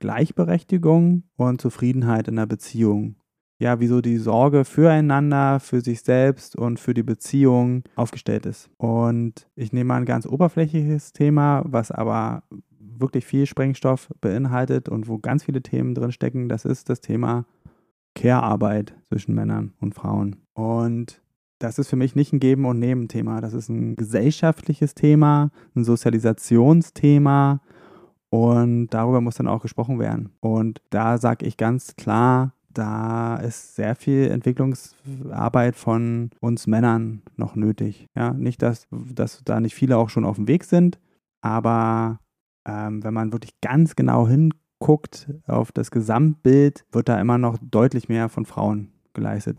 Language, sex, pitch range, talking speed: German, male, 115-140 Hz, 150 wpm